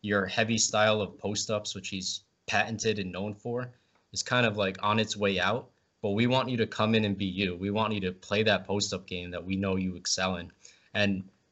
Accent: American